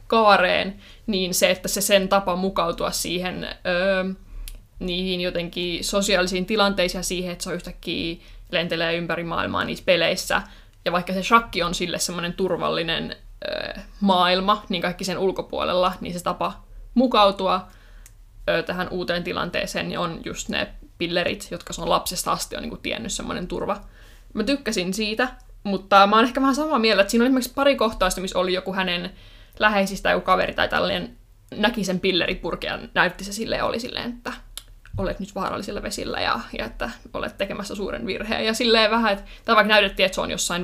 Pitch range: 180-220 Hz